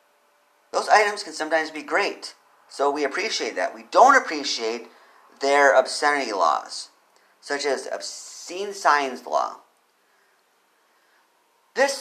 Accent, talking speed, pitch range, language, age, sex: American, 110 wpm, 120-175 Hz, English, 40-59, male